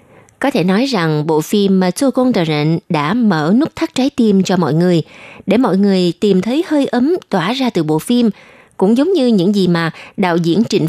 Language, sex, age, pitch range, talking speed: Vietnamese, female, 20-39, 165-230 Hz, 210 wpm